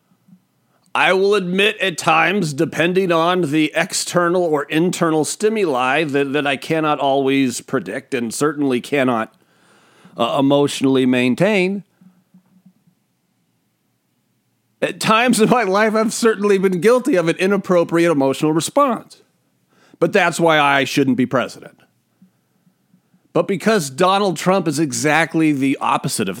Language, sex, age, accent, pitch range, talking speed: English, male, 40-59, American, 155-200 Hz, 125 wpm